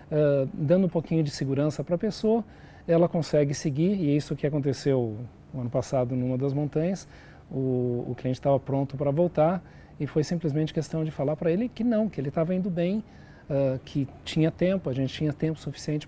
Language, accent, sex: Portuguese, Brazilian, male